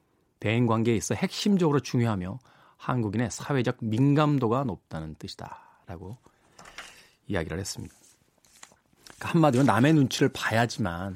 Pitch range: 105-145 Hz